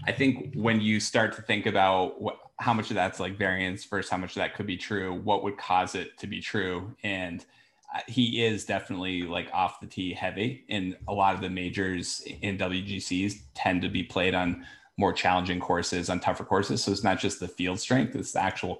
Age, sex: 20-39, male